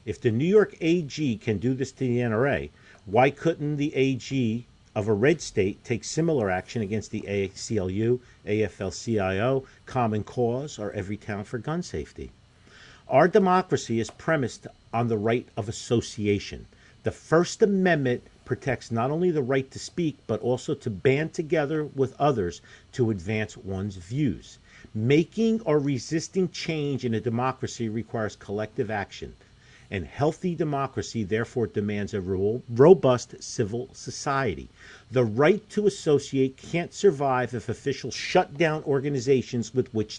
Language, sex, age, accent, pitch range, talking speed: English, male, 50-69, American, 110-150 Hz, 140 wpm